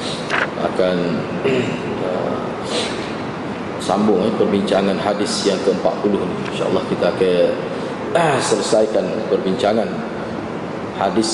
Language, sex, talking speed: Malay, male, 85 wpm